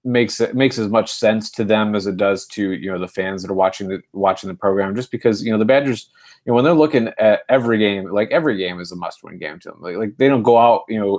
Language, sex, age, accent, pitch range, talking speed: English, male, 30-49, American, 95-115 Hz, 290 wpm